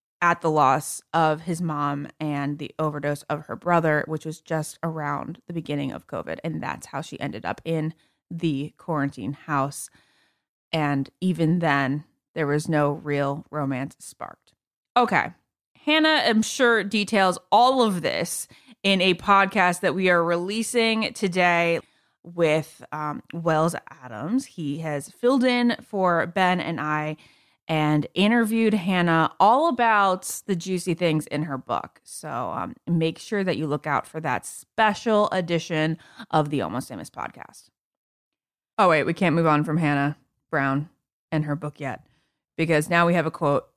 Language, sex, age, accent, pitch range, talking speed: English, female, 20-39, American, 150-190 Hz, 155 wpm